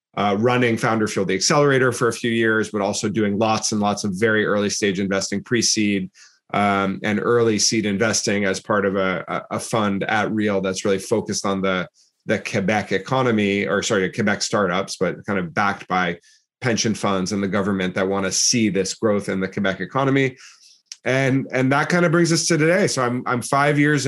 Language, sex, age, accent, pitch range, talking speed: English, male, 30-49, American, 100-125 Hz, 200 wpm